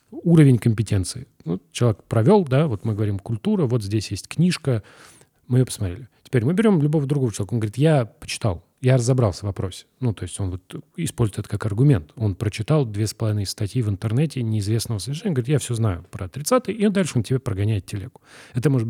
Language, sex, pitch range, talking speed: Russian, male, 105-140 Hz, 200 wpm